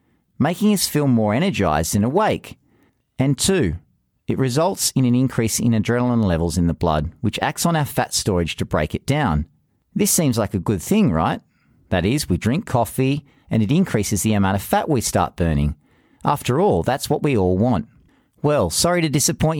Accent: Australian